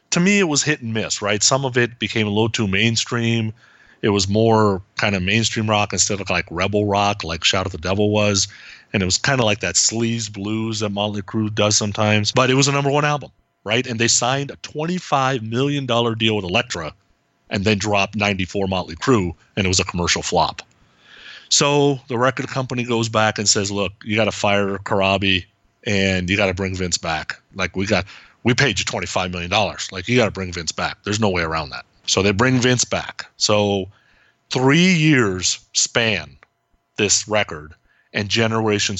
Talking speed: 200 wpm